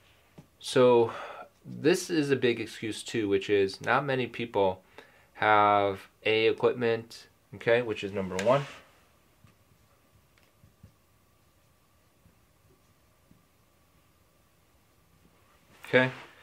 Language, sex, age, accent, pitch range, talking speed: English, male, 20-39, American, 95-120 Hz, 75 wpm